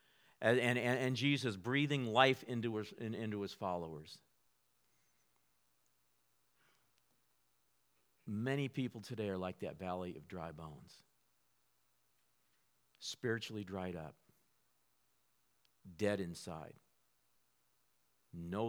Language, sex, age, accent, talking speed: English, male, 50-69, American, 85 wpm